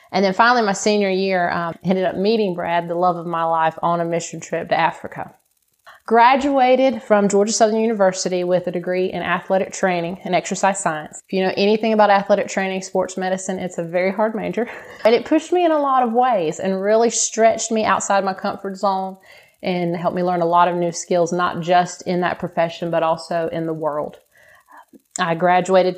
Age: 30-49